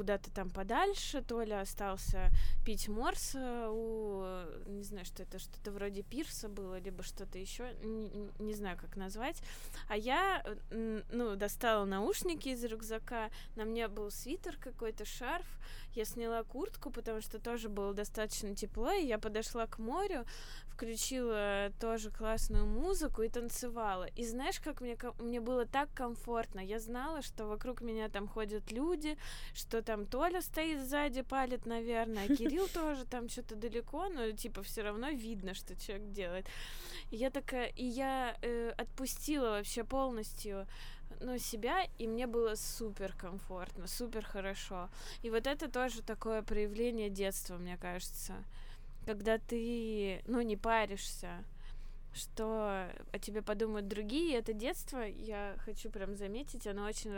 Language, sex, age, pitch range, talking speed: Russian, female, 20-39, 200-240 Hz, 145 wpm